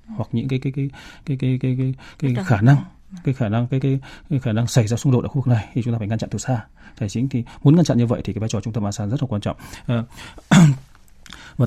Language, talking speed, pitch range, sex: Vietnamese, 305 wpm, 115-140 Hz, male